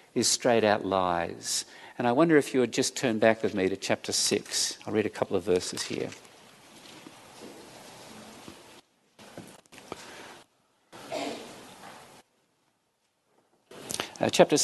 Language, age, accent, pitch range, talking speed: English, 50-69, Australian, 105-140 Hz, 105 wpm